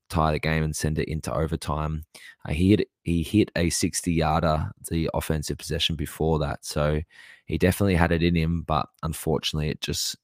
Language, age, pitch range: English, 20-39, 75-85 Hz